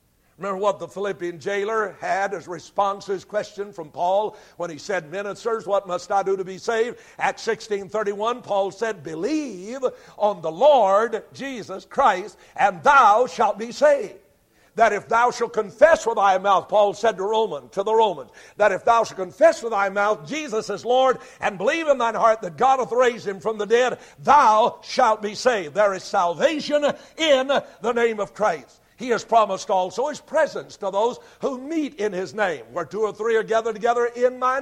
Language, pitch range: English, 200-255 Hz